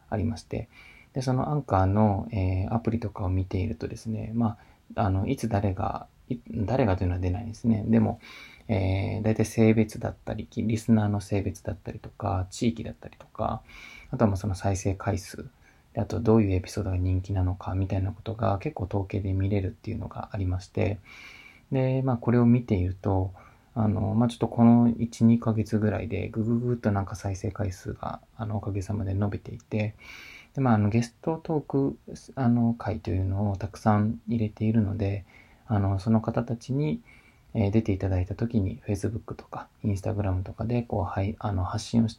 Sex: male